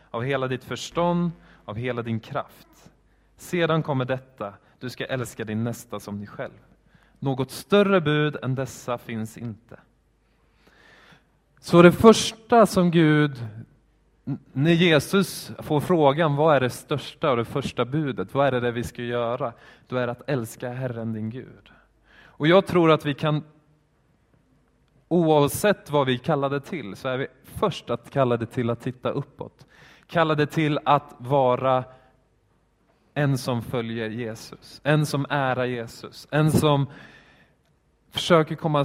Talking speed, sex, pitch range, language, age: 145 wpm, male, 120-150 Hz, Swedish, 20-39